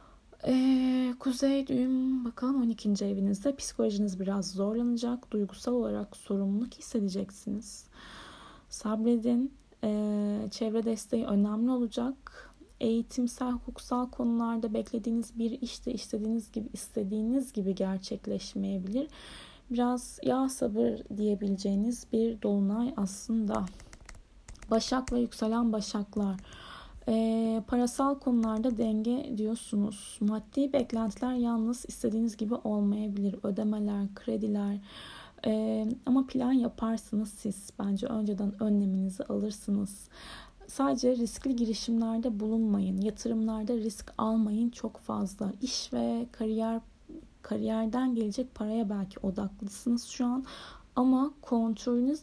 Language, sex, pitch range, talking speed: Turkish, female, 210-245 Hz, 95 wpm